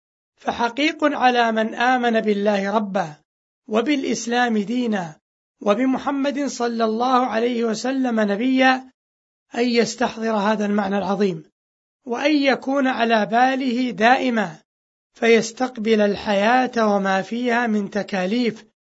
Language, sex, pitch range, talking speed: Arabic, male, 215-255 Hz, 95 wpm